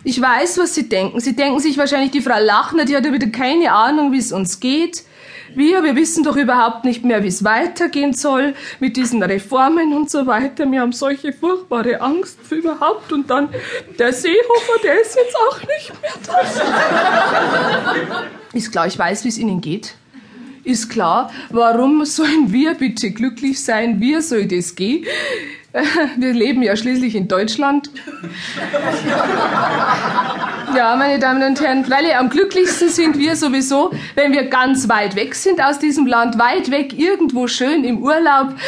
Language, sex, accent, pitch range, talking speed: German, female, German, 240-310 Hz, 170 wpm